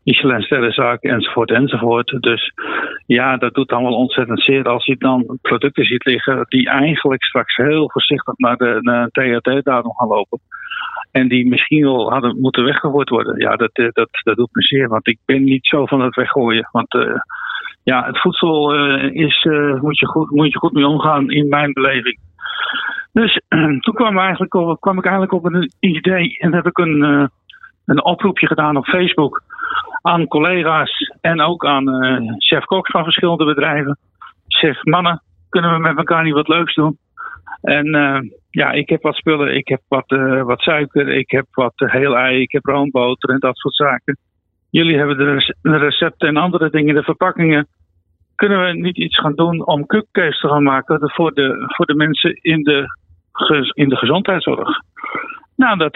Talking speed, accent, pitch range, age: 180 wpm, Dutch, 130-165 Hz, 50-69